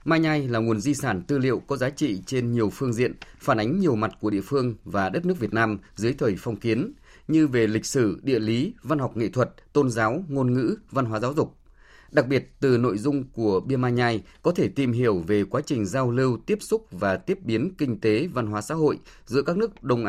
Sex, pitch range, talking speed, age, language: male, 110-145 Hz, 245 wpm, 20-39, Vietnamese